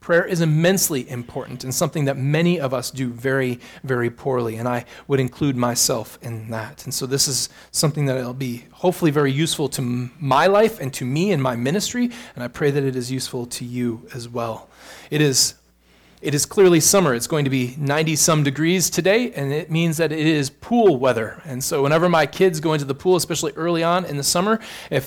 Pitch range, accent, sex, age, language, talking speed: 135-175 Hz, American, male, 30-49, English, 215 wpm